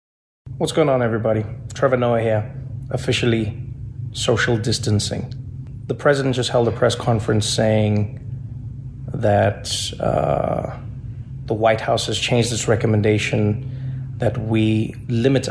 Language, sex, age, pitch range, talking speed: English, male, 30-49, 115-130 Hz, 115 wpm